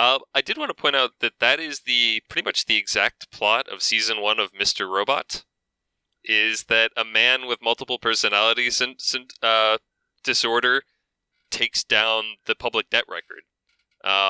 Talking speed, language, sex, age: 170 wpm, English, male, 20-39